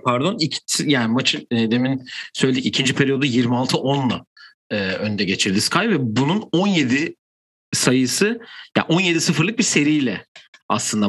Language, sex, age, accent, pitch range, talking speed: Turkish, male, 50-69, native, 120-160 Hz, 130 wpm